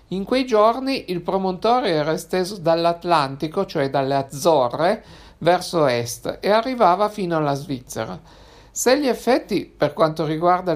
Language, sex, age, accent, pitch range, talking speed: Italian, male, 50-69, native, 150-195 Hz, 135 wpm